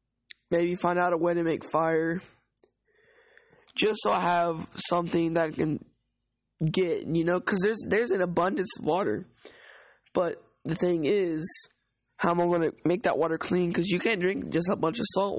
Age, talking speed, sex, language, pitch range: 20-39, 185 wpm, male, English, 170-210 Hz